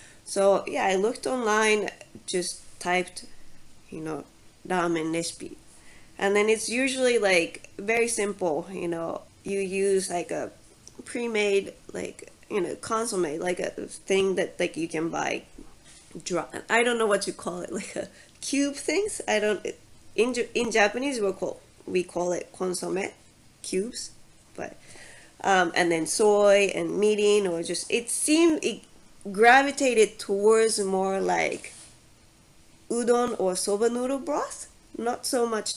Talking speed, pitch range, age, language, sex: 140 wpm, 180-235 Hz, 20-39, English, female